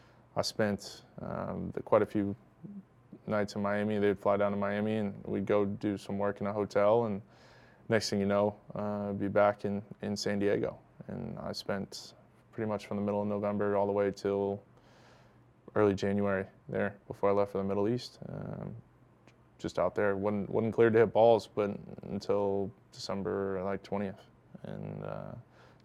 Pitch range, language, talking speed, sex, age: 100-105 Hz, English, 180 wpm, male, 20-39